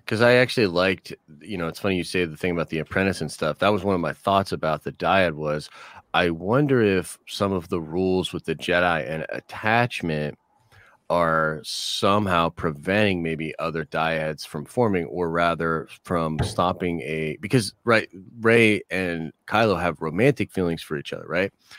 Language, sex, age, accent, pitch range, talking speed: English, male, 30-49, American, 80-100 Hz, 175 wpm